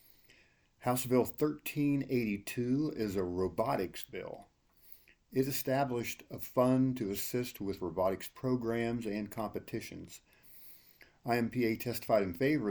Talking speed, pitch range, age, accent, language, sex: 105 wpm, 95-125 Hz, 50-69, American, English, male